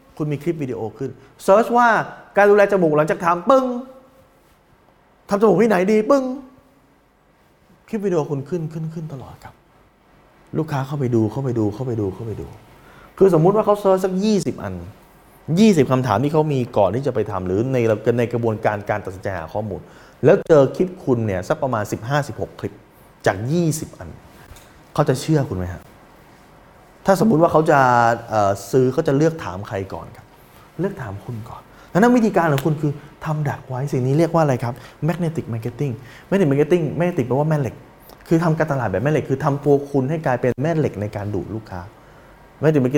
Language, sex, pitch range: Thai, male, 110-160 Hz